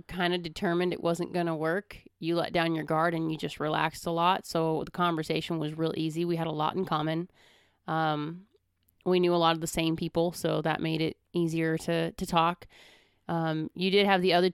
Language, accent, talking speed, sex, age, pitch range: English, American, 225 wpm, female, 30-49, 160-185 Hz